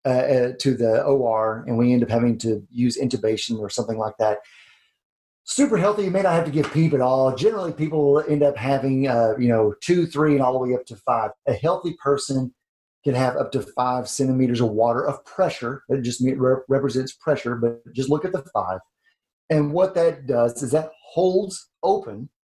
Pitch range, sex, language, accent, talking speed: 125-170 Hz, male, English, American, 200 wpm